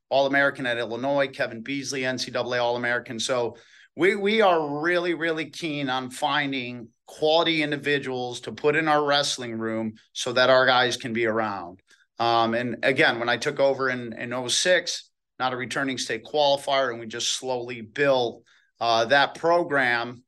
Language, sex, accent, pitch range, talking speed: English, male, American, 120-145 Hz, 160 wpm